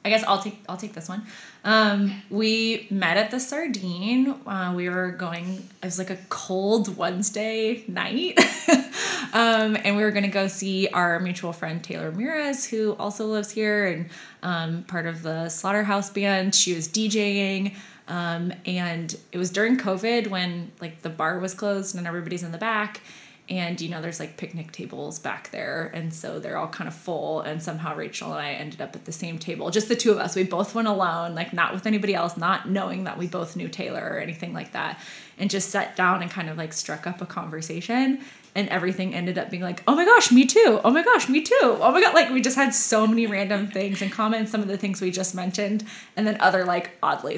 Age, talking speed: 20-39, 220 wpm